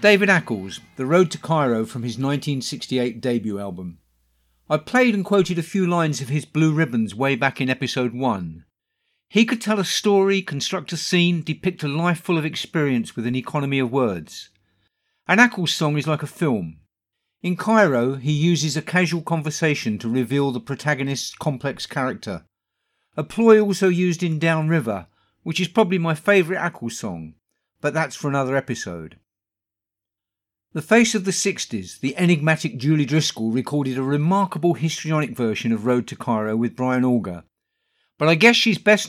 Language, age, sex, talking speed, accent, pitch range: English, 50-69, male, 170 wpm, British, 120-165 Hz